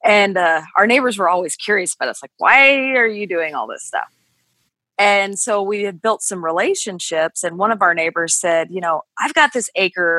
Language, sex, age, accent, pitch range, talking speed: English, female, 20-39, American, 180-250 Hz, 210 wpm